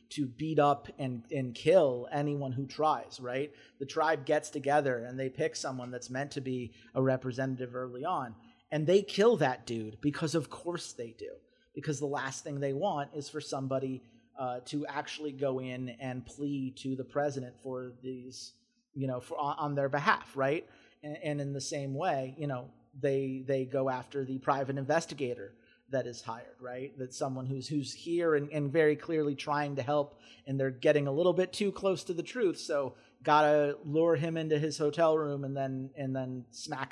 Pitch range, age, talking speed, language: 130-150 Hz, 30-49, 195 wpm, English